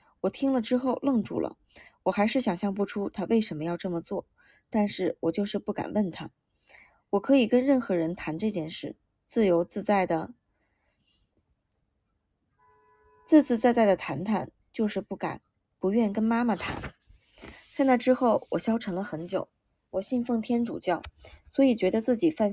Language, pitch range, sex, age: Chinese, 180-240 Hz, female, 20-39